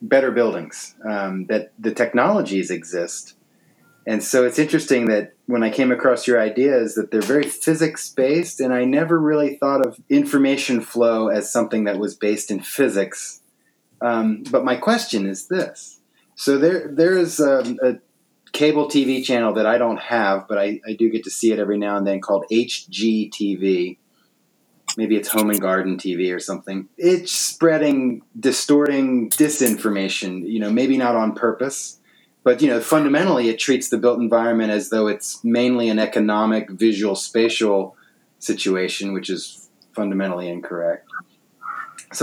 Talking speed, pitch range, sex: 160 wpm, 105-135 Hz, male